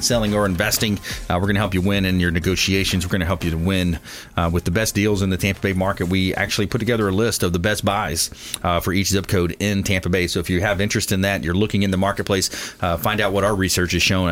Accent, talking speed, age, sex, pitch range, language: American, 285 wpm, 30-49, male, 95-115 Hz, English